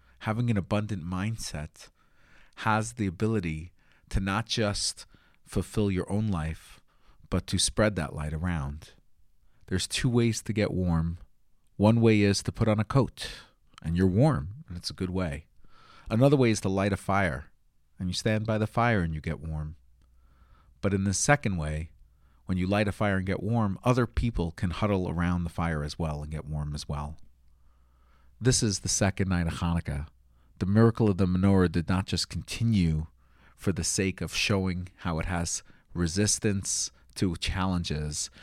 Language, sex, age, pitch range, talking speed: English, male, 40-59, 80-110 Hz, 175 wpm